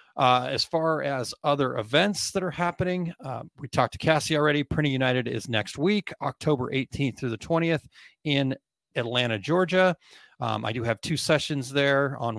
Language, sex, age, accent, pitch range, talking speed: English, male, 40-59, American, 115-145 Hz, 175 wpm